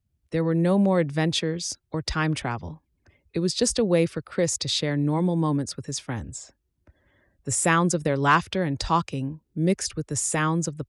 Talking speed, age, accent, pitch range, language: 195 wpm, 30-49, American, 130-160 Hz, English